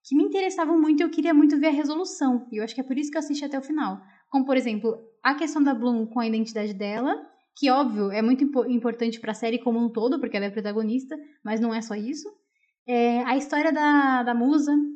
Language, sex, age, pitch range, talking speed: Portuguese, female, 10-29, 235-290 Hz, 235 wpm